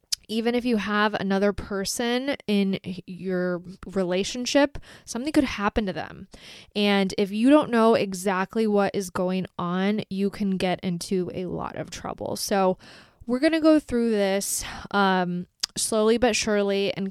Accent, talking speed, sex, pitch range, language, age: American, 155 wpm, female, 190-240 Hz, English, 20-39